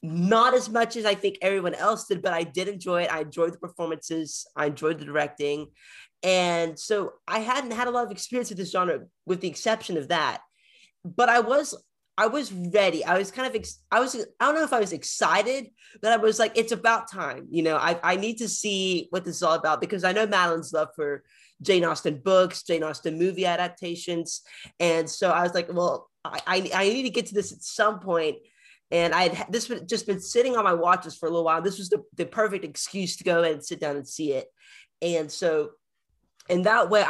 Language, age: English, 20-39